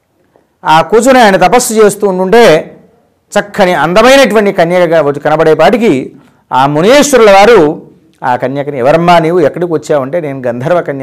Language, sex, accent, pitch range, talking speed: Telugu, male, native, 150-215 Hz, 120 wpm